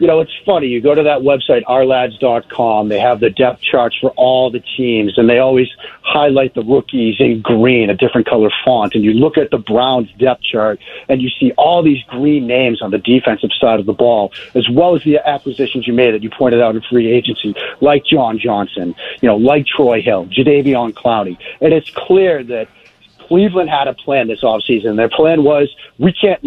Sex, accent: male, American